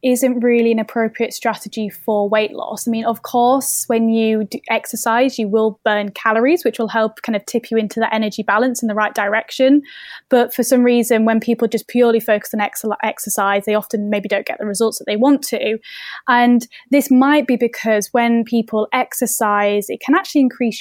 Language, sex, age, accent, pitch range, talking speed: English, female, 10-29, British, 220-245 Hz, 195 wpm